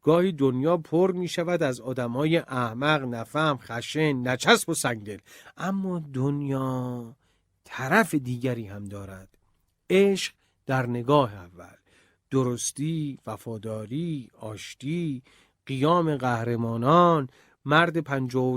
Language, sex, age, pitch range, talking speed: Persian, male, 40-59, 120-155 Hz, 100 wpm